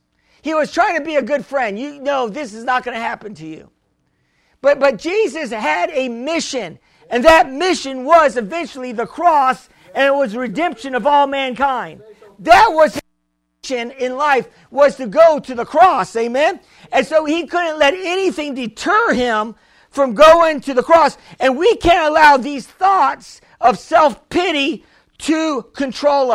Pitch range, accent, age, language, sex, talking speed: 250-320 Hz, American, 50-69, English, male, 170 wpm